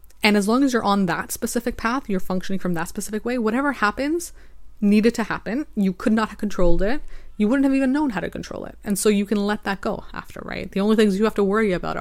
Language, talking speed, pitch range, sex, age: English, 260 wpm, 180-220 Hz, female, 20-39